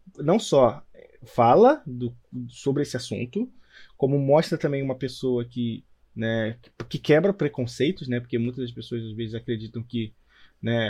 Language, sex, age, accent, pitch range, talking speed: Portuguese, male, 20-39, Brazilian, 120-150 Hz, 155 wpm